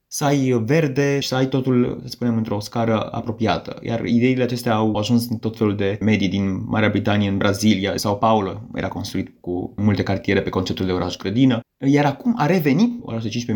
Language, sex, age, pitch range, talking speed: Romanian, male, 20-39, 105-125 Hz, 200 wpm